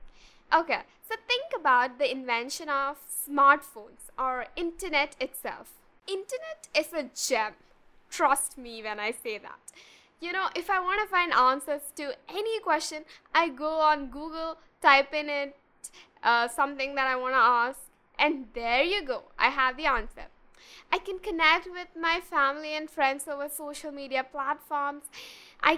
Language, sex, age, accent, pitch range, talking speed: English, female, 10-29, Indian, 275-365 Hz, 155 wpm